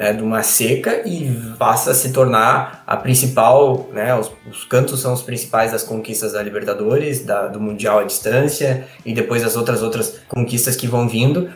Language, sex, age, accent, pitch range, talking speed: Portuguese, male, 20-39, Brazilian, 110-130 Hz, 185 wpm